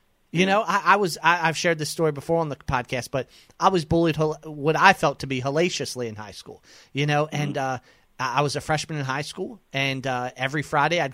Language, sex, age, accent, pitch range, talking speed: English, male, 30-49, American, 135-175 Hz, 230 wpm